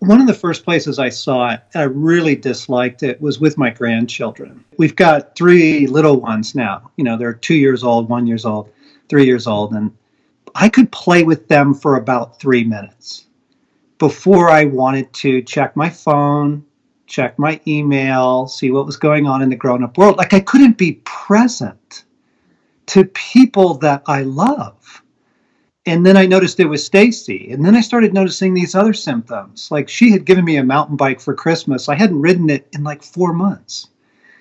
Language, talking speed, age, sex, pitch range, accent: English, 185 wpm, 40-59, male, 130-180 Hz, American